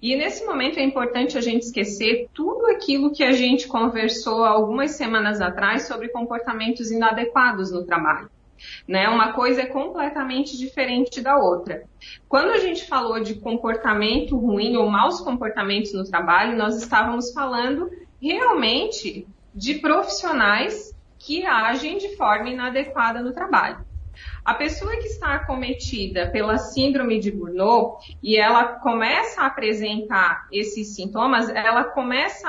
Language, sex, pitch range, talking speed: Portuguese, female, 220-270 Hz, 135 wpm